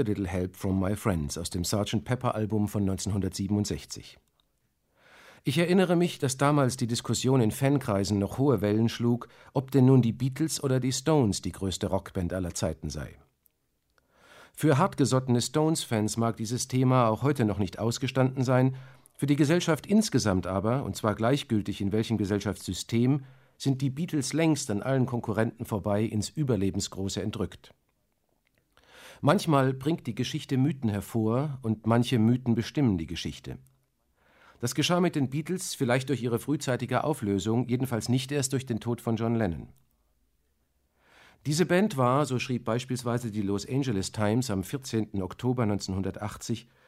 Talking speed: 150 wpm